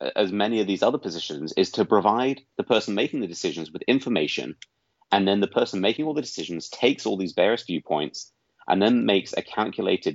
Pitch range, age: 100-125 Hz, 30-49